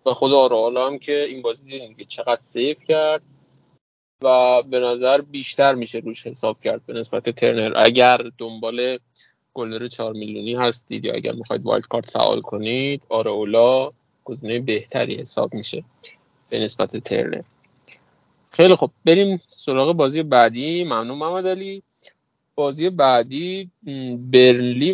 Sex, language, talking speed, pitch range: male, Persian, 130 wpm, 120-140 Hz